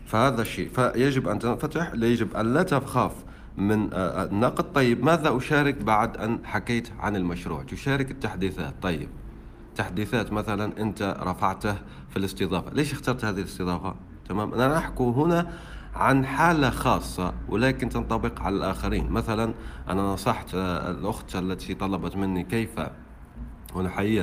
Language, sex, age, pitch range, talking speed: Arabic, male, 40-59, 95-130 Hz, 130 wpm